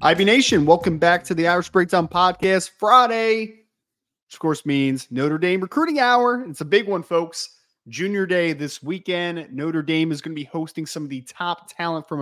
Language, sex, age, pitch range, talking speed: English, male, 20-39, 155-210 Hz, 195 wpm